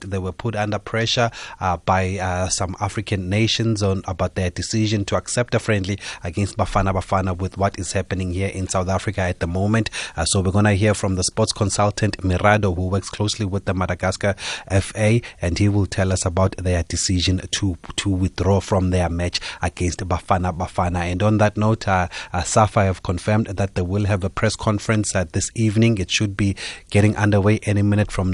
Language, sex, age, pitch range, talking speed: English, male, 30-49, 90-110 Hz, 200 wpm